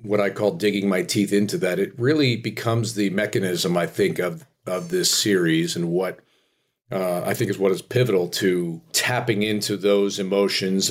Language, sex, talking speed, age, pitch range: English, male, 180 wpm, 40-59, 95-115 Hz